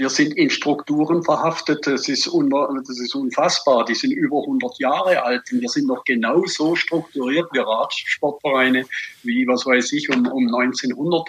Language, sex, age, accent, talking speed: German, male, 50-69, German, 160 wpm